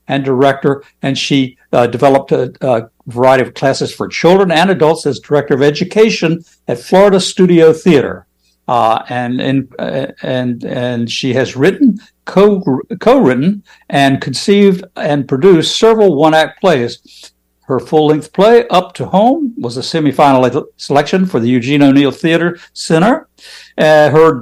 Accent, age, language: American, 60-79, English